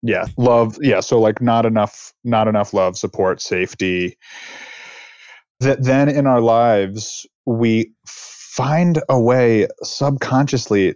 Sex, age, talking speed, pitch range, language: male, 30-49, 120 wpm, 105-130 Hz, English